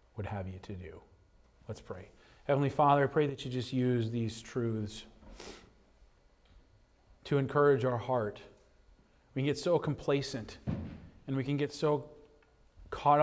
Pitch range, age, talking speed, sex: 110-150 Hz, 40-59, 140 wpm, male